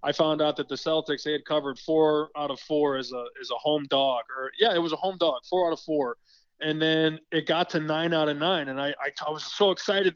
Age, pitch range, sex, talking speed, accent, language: 20-39, 150-180 Hz, male, 270 wpm, American, English